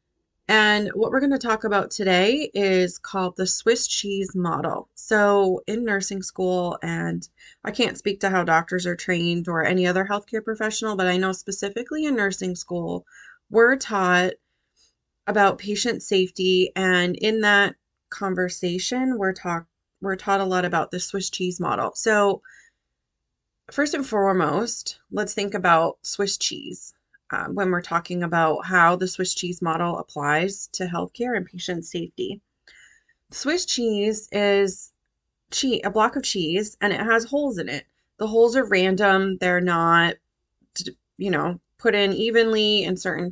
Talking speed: 150 wpm